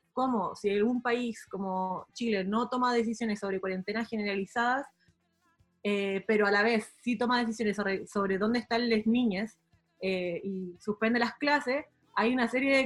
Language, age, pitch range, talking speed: Spanish, 20-39, 210-245 Hz, 165 wpm